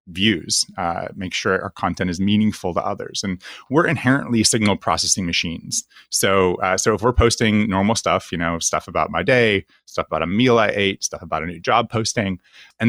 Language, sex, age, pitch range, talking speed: English, male, 30-49, 95-120 Hz, 200 wpm